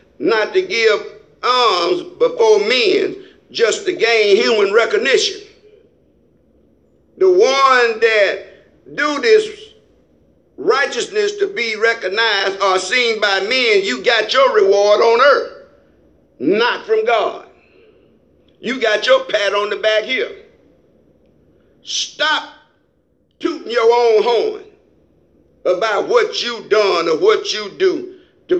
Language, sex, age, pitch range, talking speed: English, male, 50-69, 300-435 Hz, 115 wpm